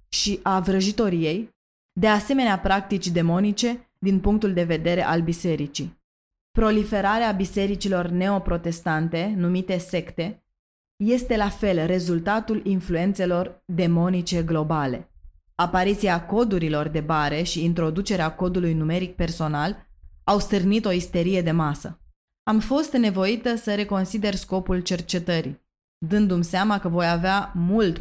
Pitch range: 165-200 Hz